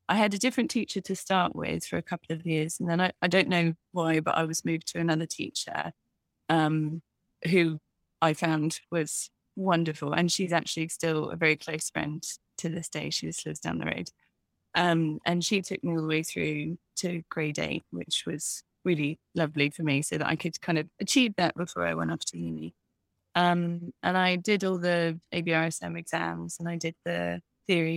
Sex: female